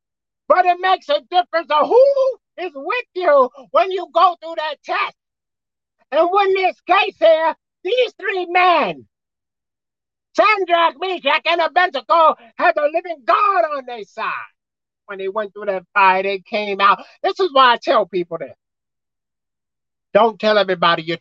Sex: male